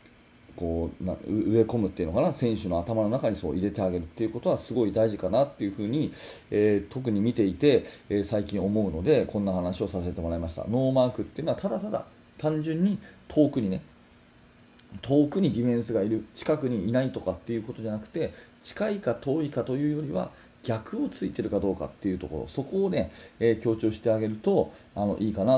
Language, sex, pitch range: Japanese, male, 95-120 Hz